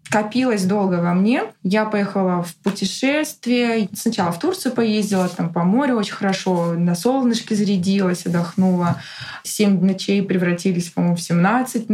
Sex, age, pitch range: female, 20-39, 185-235 Hz